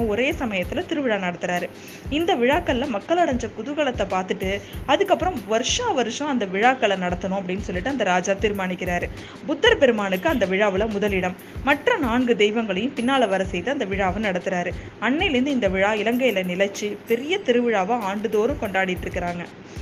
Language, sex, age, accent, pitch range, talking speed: Tamil, female, 20-39, native, 195-265 Hz, 80 wpm